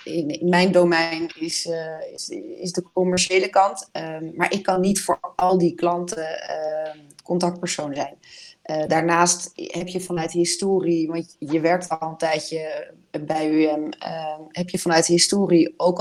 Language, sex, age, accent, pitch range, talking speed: Dutch, female, 30-49, Dutch, 165-180 Hz, 155 wpm